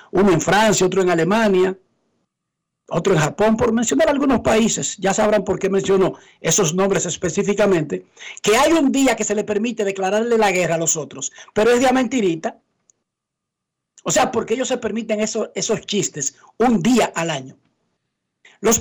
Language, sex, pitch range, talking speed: Spanish, male, 170-220 Hz, 170 wpm